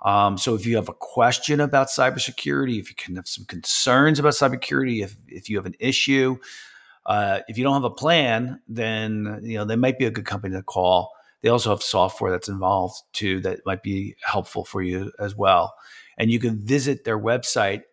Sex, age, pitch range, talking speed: male, 40-59, 100-120 Hz, 210 wpm